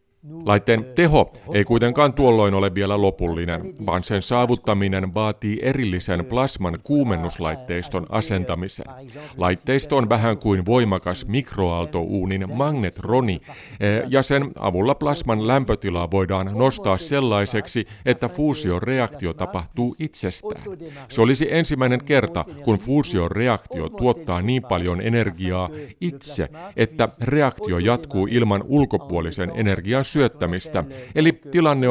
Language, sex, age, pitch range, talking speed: Finnish, male, 50-69, 95-130 Hz, 105 wpm